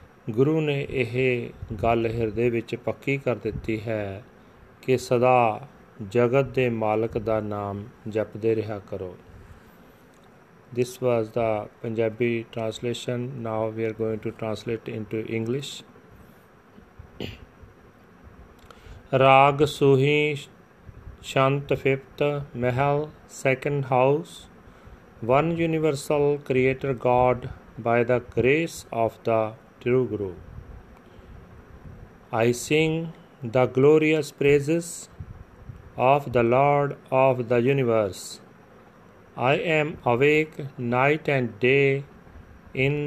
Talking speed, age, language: 95 wpm, 40-59, Punjabi